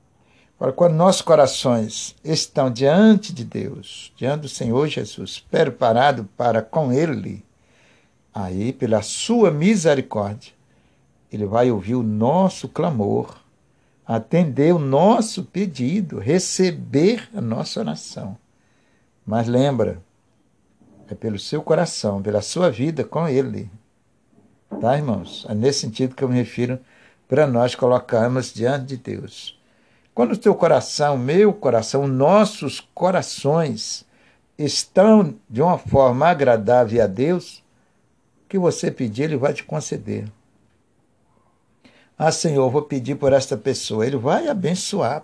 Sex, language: male, Portuguese